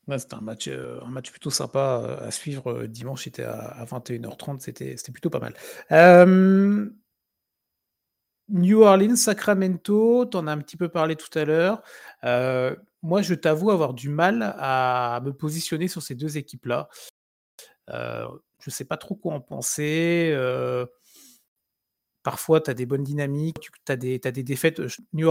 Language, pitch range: French, 130-170 Hz